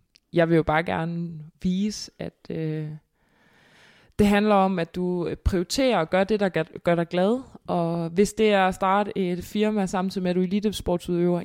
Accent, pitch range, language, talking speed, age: native, 160-190 Hz, Danish, 190 wpm, 20-39